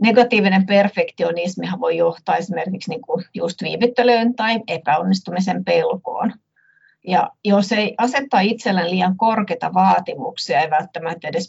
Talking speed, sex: 105 wpm, female